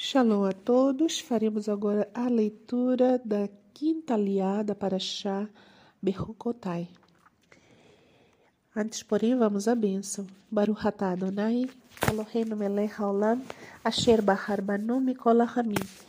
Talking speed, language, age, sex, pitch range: 75 wpm, Portuguese, 40-59, female, 200-240 Hz